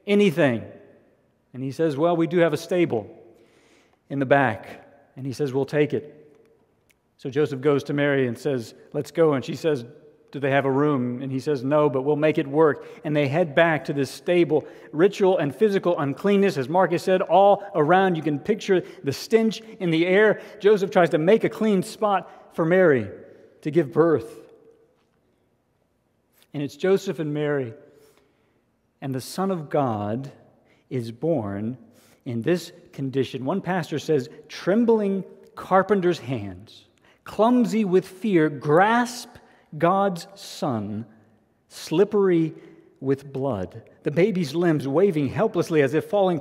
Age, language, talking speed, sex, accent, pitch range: 40-59, English, 155 wpm, male, American, 135-190 Hz